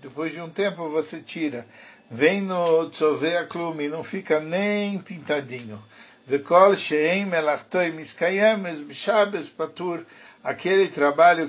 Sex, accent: male, Brazilian